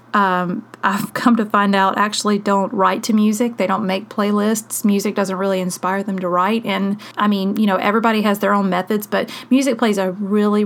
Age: 30-49